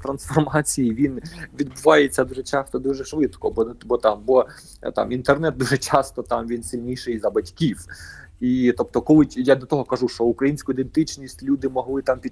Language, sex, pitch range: Ukrainian, male, 110-135 Hz